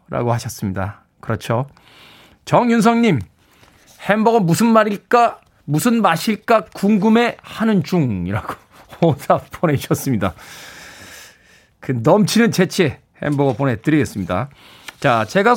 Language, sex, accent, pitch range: Korean, male, native, 130-200 Hz